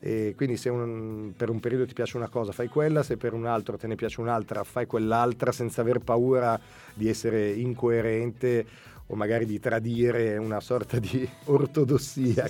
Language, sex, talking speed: Italian, male, 170 wpm